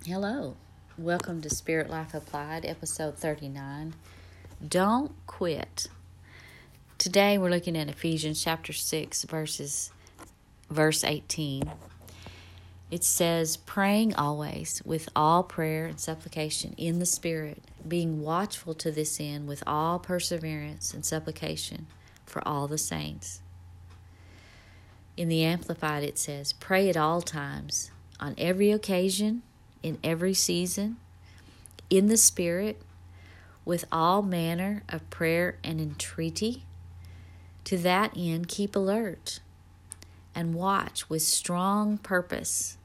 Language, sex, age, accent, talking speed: English, female, 40-59, American, 115 wpm